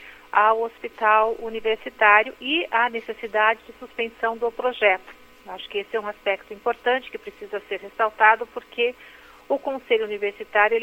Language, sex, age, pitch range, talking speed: Portuguese, female, 50-69, 200-235 Hz, 140 wpm